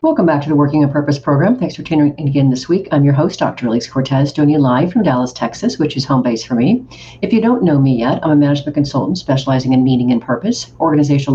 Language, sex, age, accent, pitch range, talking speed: English, female, 50-69, American, 135-155 Hz, 260 wpm